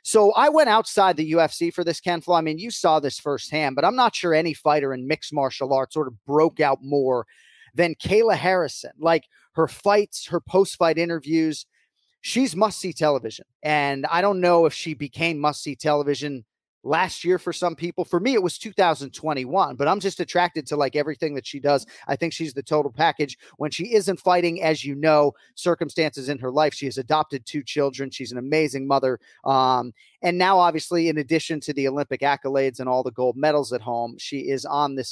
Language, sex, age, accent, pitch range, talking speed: English, male, 30-49, American, 135-165 Hz, 205 wpm